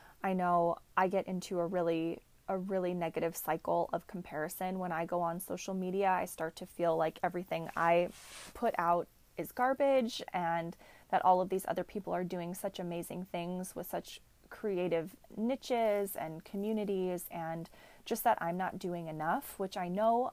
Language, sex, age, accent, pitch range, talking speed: English, female, 30-49, American, 170-200 Hz, 170 wpm